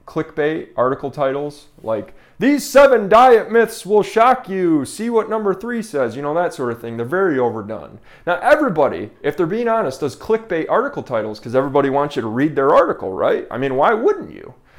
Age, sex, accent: 30-49, male, American